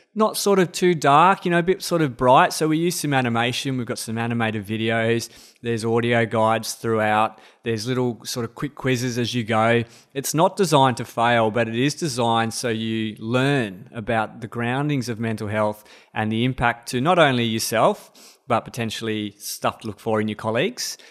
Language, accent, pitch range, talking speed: English, Australian, 115-140 Hz, 195 wpm